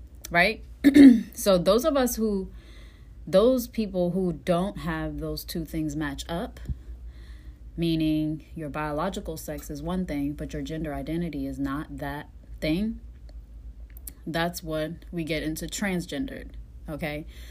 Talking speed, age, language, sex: 130 wpm, 30-49, Amharic, female